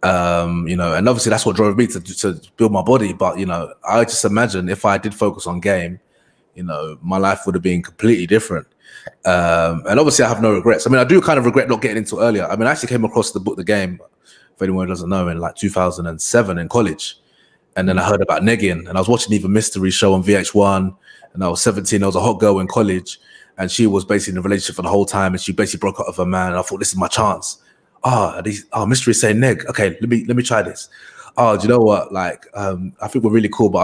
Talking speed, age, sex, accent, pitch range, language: 270 wpm, 20-39, male, British, 90-110 Hz, English